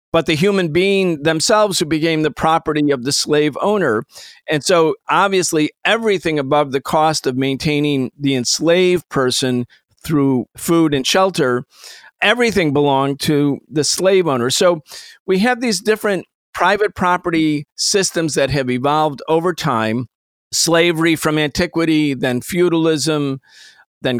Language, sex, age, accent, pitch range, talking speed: English, male, 50-69, American, 135-180 Hz, 135 wpm